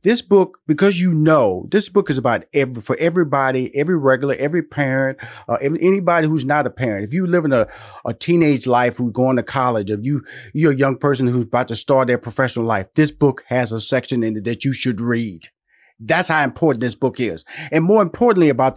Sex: male